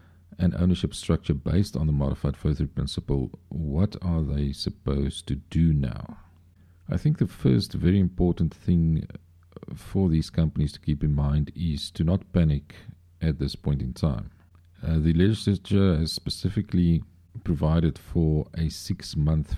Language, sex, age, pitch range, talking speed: English, male, 50-69, 75-90 Hz, 155 wpm